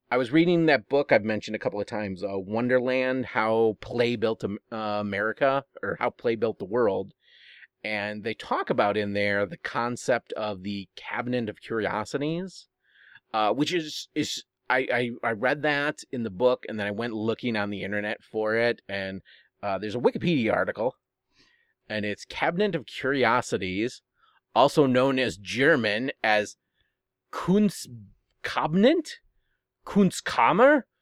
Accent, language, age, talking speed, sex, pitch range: American, English, 30-49, 150 wpm, male, 105-140 Hz